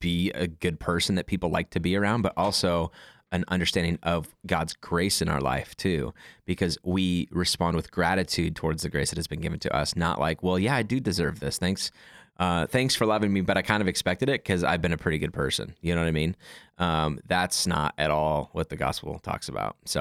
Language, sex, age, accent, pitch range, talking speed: English, male, 20-39, American, 85-95 Hz, 235 wpm